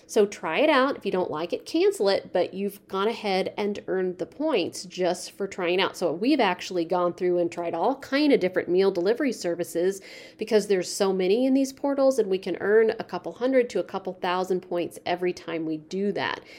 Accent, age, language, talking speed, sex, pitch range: American, 40-59, English, 220 wpm, female, 170-205 Hz